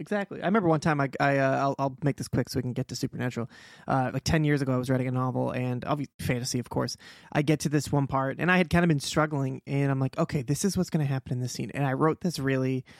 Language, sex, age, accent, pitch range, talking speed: English, male, 20-39, American, 135-170 Hz, 305 wpm